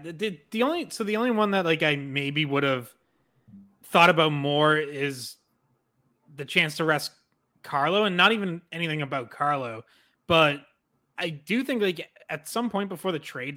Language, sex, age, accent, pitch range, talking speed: English, male, 20-39, American, 125-160 Hz, 175 wpm